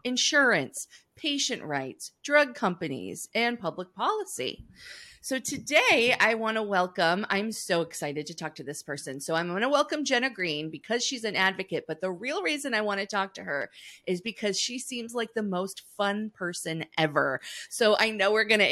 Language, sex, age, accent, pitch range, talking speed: English, female, 30-49, American, 165-235 Hz, 190 wpm